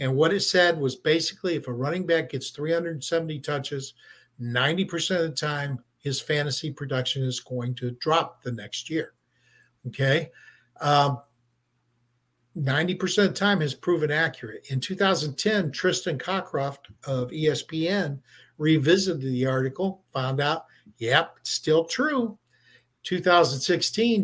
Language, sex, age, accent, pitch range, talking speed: English, male, 60-79, American, 135-180 Hz, 125 wpm